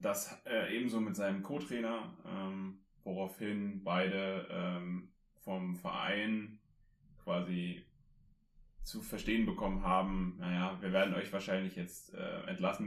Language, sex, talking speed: German, male, 110 wpm